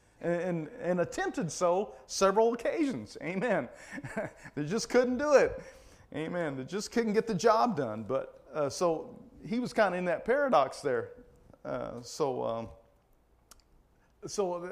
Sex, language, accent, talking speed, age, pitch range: male, English, American, 145 wpm, 40-59, 125-190 Hz